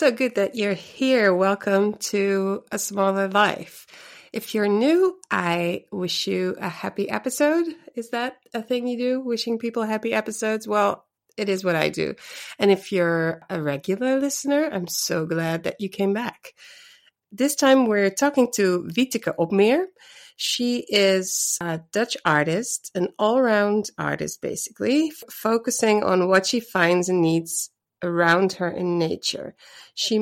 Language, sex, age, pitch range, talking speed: English, female, 30-49, 180-240 Hz, 155 wpm